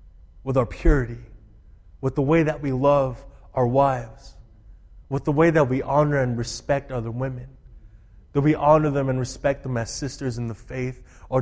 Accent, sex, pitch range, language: American, male, 110-160 Hz, English